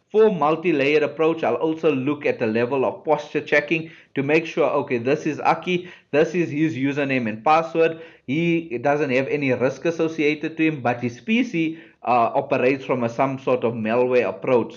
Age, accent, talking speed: 50-69, Indian, 180 wpm